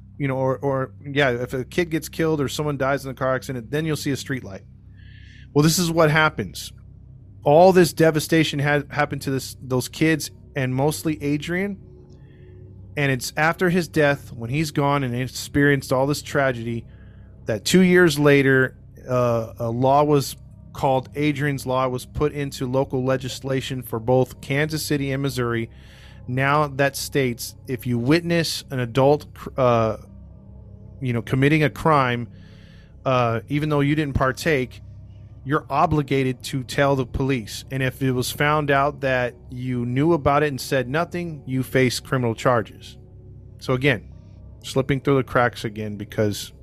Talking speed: 165 wpm